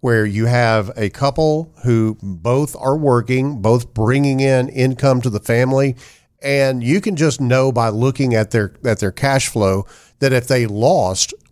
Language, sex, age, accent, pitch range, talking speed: English, male, 50-69, American, 110-140 Hz, 170 wpm